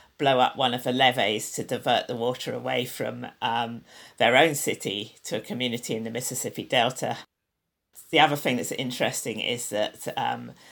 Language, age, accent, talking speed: English, 50-69, British, 175 wpm